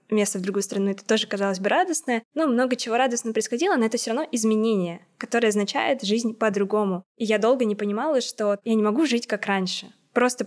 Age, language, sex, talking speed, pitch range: 20-39, Russian, female, 205 wpm, 195-230 Hz